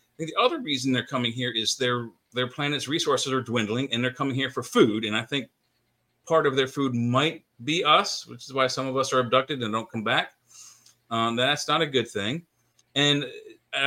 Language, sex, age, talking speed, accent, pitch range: English, male, 40-59, 210 wpm, American, 125-155 Hz